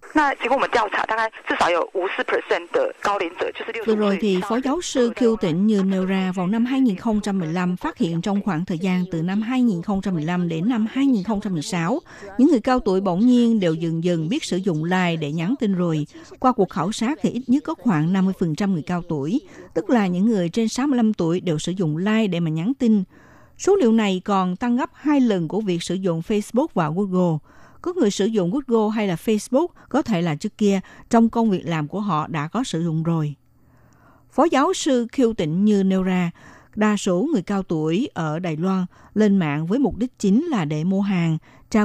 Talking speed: 195 wpm